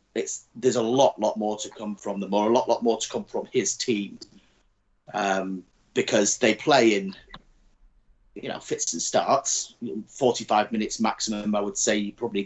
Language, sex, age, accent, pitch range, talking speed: English, male, 30-49, British, 110-125 Hz, 185 wpm